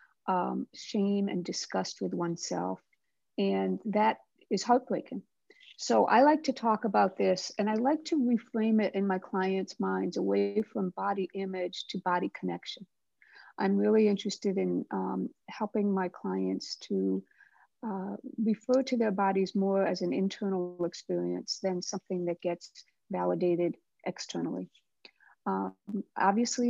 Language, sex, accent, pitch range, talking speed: English, female, American, 175-210 Hz, 135 wpm